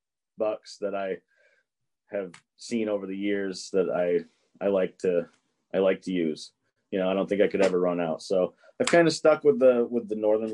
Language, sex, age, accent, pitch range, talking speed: English, male, 30-49, American, 90-120 Hz, 210 wpm